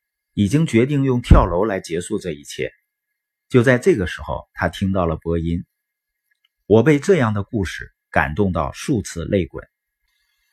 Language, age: Chinese, 50-69